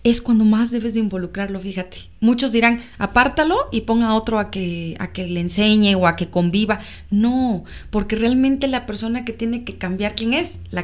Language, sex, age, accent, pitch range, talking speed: Spanish, female, 30-49, Mexican, 185-225 Hz, 195 wpm